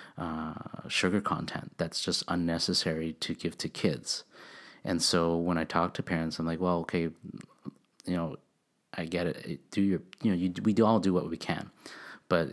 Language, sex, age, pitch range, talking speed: English, male, 30-49, 80-90 Hz, 185 wpm